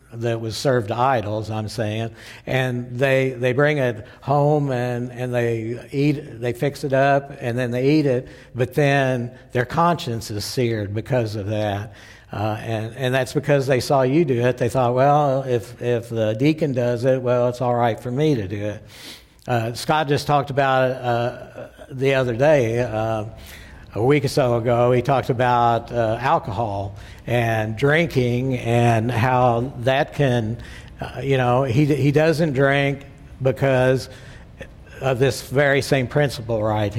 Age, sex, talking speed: 60-79, male, 165 wpm